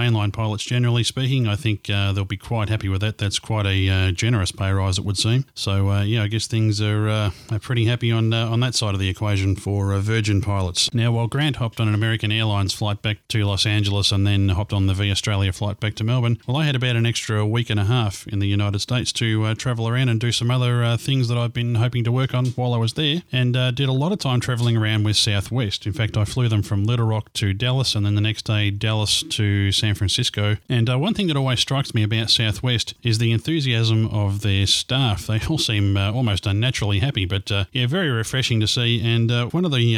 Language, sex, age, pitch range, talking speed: English, male, 30-49, 100-120 Hz, 255 wpm